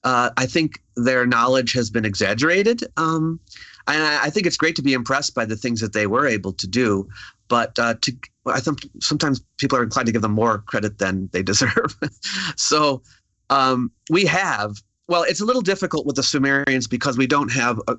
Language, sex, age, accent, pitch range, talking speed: English, male, 30-49, American, 110-150 Hz, 195 wpm